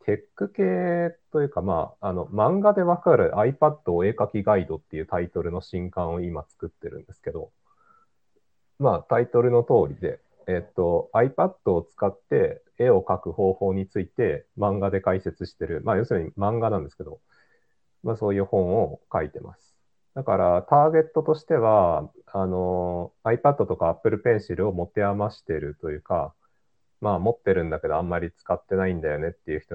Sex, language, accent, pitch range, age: male, Japanese, native, 90-150 Hz, 40-59